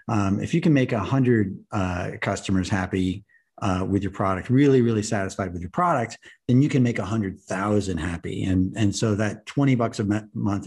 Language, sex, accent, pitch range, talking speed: English, male, American, 95-120 Hz, 200 wpm